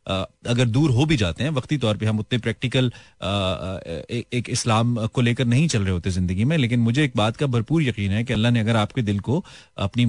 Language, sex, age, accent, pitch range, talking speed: Hindi, male, 30-49, native, 110-145 Hz, 245 wpm